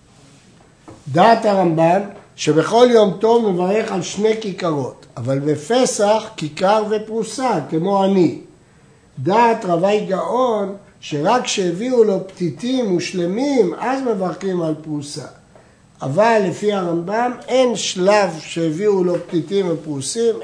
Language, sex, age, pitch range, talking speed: Hebrew, male, 60-79, 170-230 Hz, 105 wpm